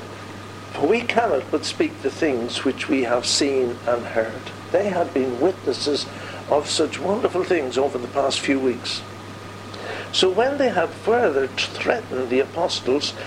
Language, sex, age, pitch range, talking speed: English, male, 60-79, 105-160 Hz, 150 wpm